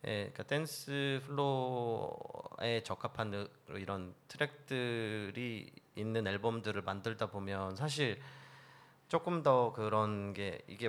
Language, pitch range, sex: Korean, 100-135 Hz, male